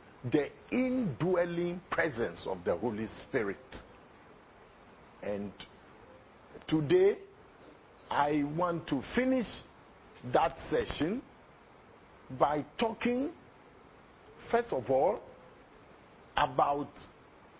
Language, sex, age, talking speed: English, male, 50-69, 70 wpm